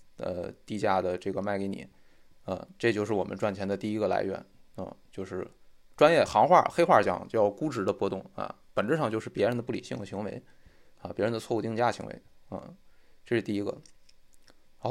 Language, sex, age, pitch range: Chinese, male, 20-39, 100-125 Hz